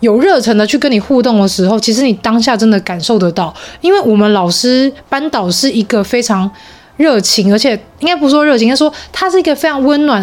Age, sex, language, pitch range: 20-39, female, Chinese, 205-255 Hz